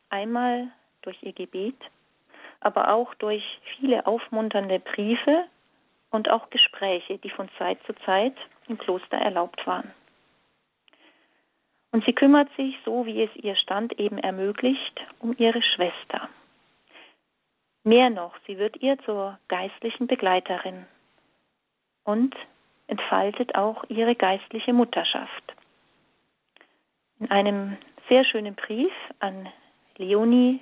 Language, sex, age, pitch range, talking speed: German, female, 40-59, 195-250 Hz, 110 wpm